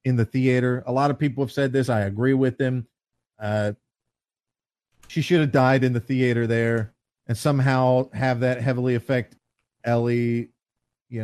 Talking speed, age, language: 165 wpm, 40-59, English